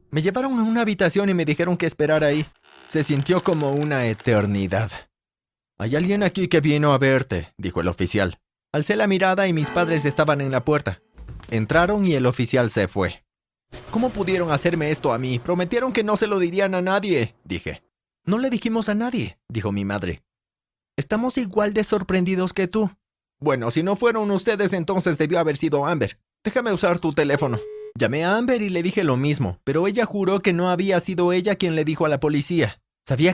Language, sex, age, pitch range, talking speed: Spanish, male, 30-49, 120-195 Hz, 195 wpm